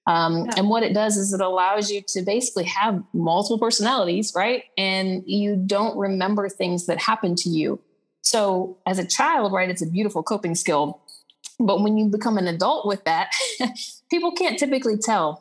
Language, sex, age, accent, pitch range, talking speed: English, female, 30-49, American, 170-210 Hz, 180 wpm